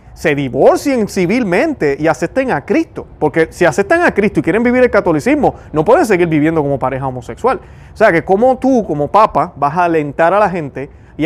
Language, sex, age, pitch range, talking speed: Spanish, male, 30-49, 150-180 Hz, 205 wpm